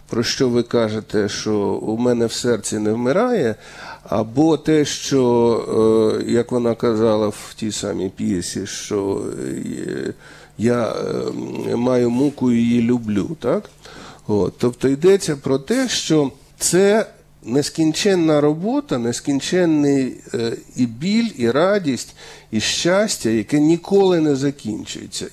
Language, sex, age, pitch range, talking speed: Ukrainian, male, 50-69, 120-170 Hz, 110 wpm